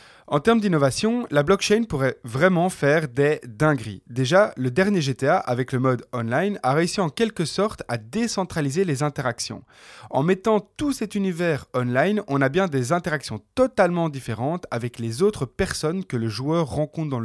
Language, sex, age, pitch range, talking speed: French, male, 20-39, 125-185 Hz, 170 wpm